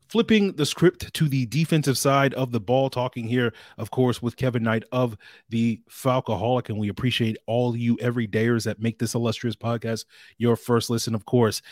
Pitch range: 110-130 Hz